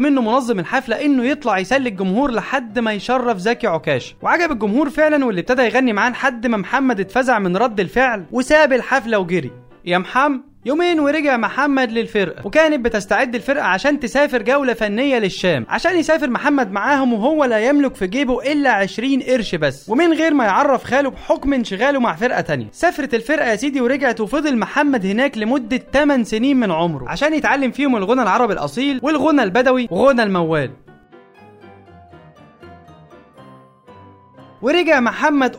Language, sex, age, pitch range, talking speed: Arabic, male, 20-39, 200-275 Hz, 150 wpm